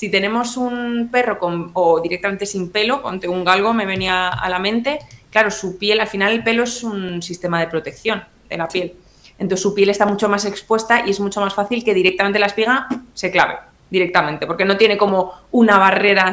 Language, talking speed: Spanish, 205 wpm